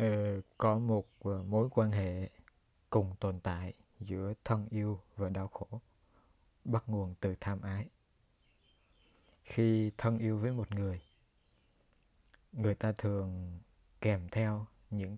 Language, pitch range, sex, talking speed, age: Vietnamese, 95-115 Hz, male, 125 wpm, 20-39